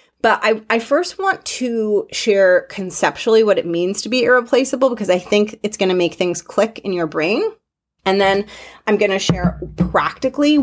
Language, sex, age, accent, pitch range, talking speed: English, female, 30-49, American, 185-235 Hz, 185 wpm